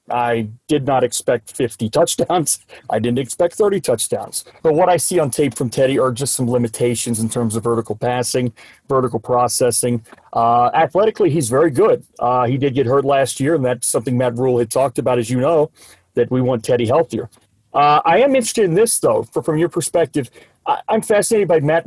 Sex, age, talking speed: male, 40-59, 200 wpm